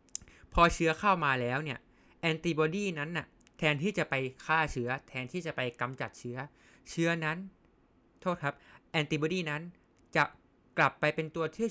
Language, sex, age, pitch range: Thai, male, 20-39, 125-160 Hz